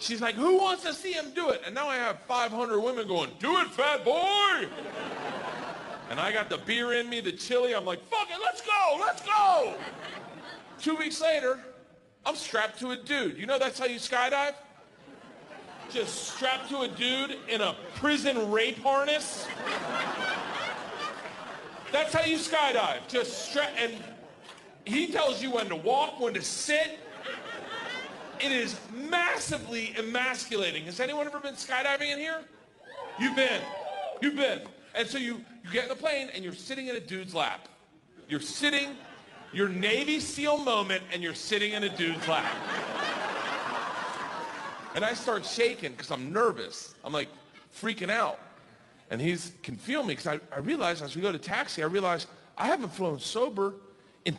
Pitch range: 220-295 Hz